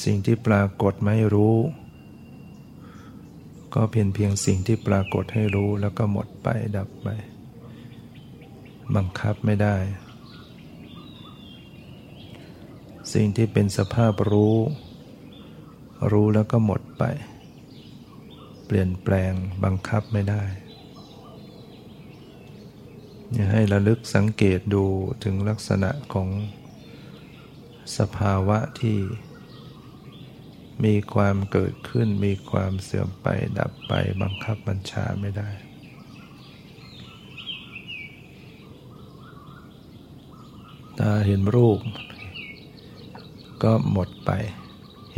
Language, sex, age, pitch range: Thai, male, 60-79, 100-115 Hz